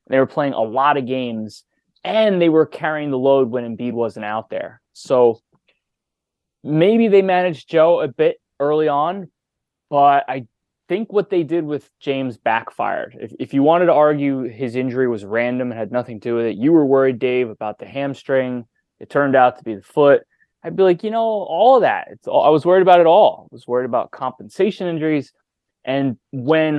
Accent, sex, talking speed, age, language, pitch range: American, male, 205 wpm, 20-39, English, 115-150 Hz